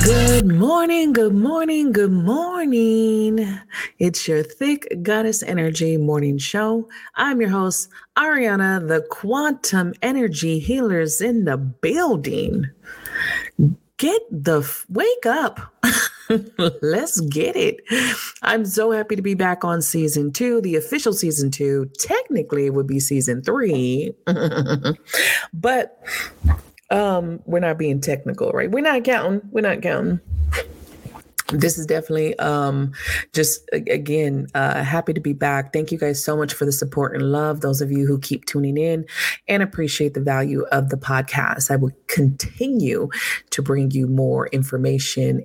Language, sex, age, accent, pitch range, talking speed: English, female, 30-49, American, 140-220 Hz, 140 wpm